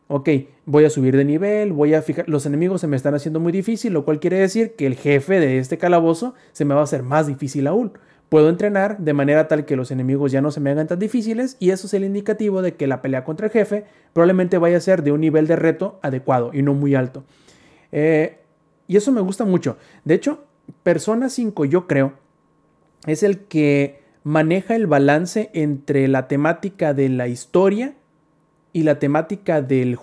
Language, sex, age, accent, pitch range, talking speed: Spanish, male, 30-49, Mexican, 145-185 Hz, 210 wpm